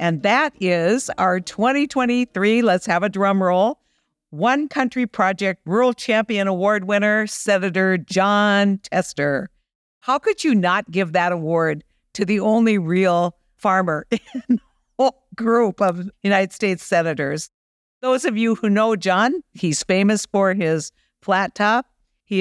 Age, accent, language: 60-79, American, English